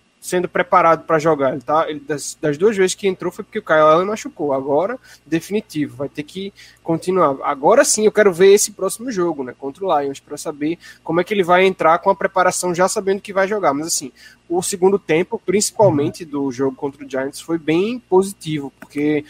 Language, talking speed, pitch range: Portuguese, 210 wpm, 150-185 Hz